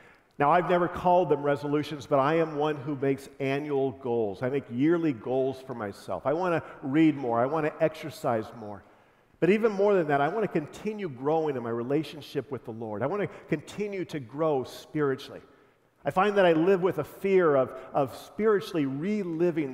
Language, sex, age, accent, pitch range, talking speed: English, male, 50-69, American, 130-175 Hz, 200 wpm